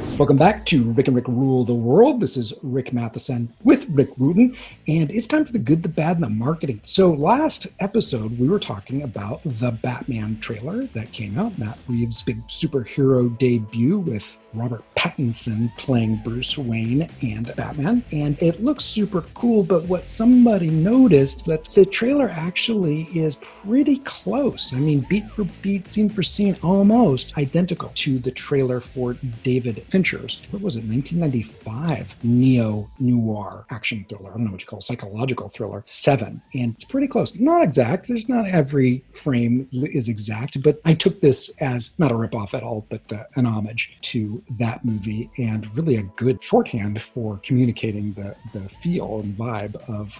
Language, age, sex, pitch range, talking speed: English, 50-69, male, 115-175 Hz, 175 wpm